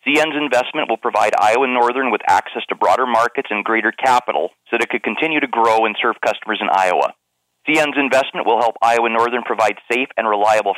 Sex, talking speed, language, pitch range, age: male, 200 wpm, English, 110-135 Hz, 30-49